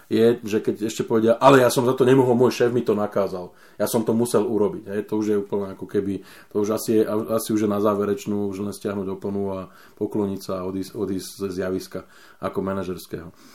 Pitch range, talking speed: 100-115 Hz, 225 wpm